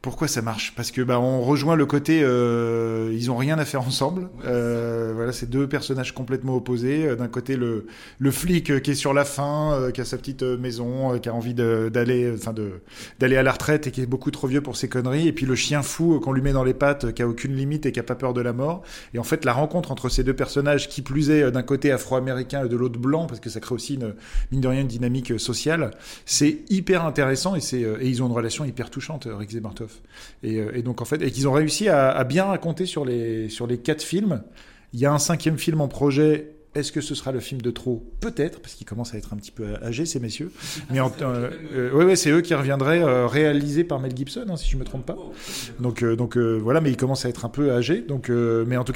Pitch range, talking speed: 120-150 Hz, 265 wpm